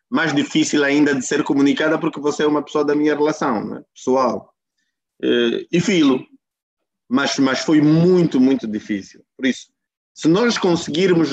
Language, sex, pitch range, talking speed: Portuguese, male, 120-155 Hz, 155 wpm